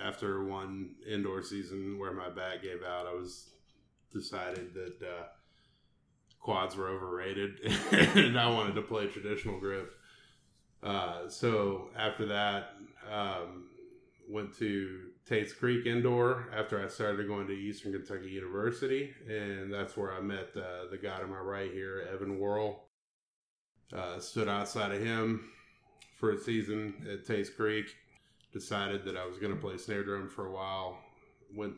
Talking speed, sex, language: 150 wpm, male, English